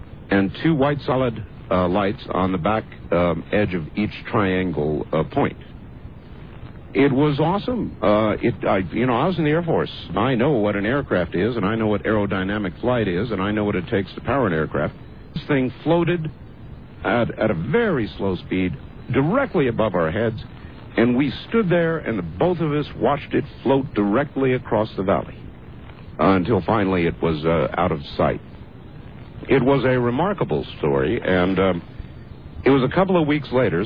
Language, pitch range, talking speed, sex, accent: English, 95-140 Hz, 185 wpm, male, American